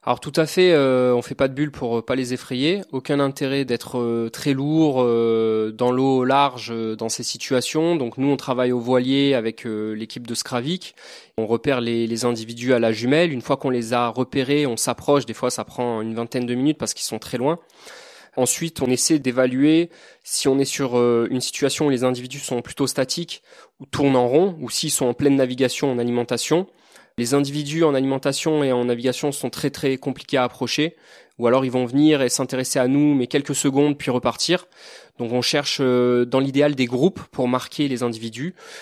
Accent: French